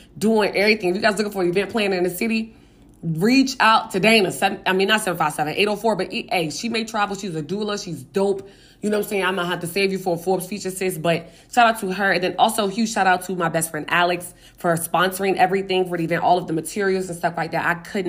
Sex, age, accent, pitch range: female, 20-39, American, 175-220 Hz